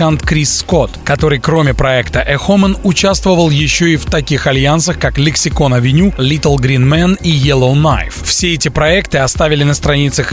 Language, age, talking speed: Russian, 20-39, 150 wpm